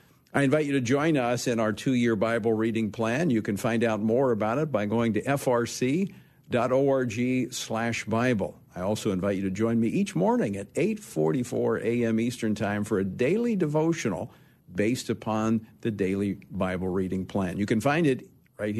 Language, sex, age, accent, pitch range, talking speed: English, male, 50-69, American, 115-145 Hz, 175 wpm